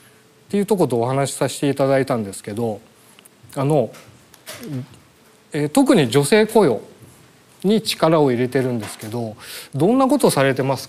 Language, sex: Japanese, male